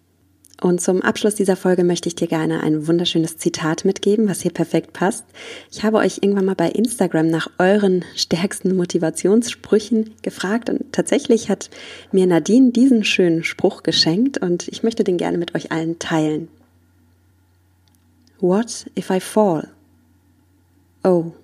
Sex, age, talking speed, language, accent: female, 20-39, 145 wpm, German, German